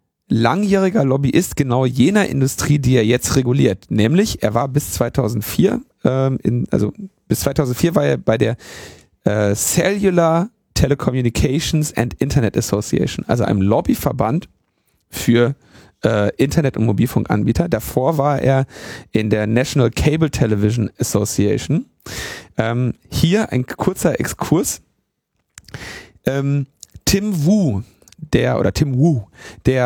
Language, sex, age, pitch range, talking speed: German, male, 40-59, 120-155 Hz, 115 wpm